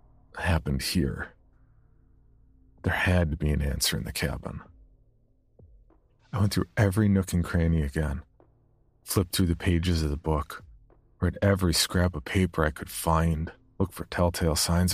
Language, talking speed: English, 155 wpm